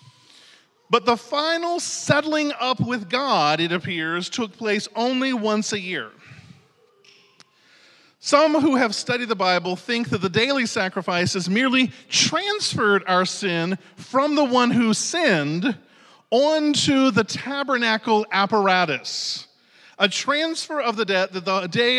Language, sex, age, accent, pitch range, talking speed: English, male, 40-59, American, 190-265 Hz, 130 wpm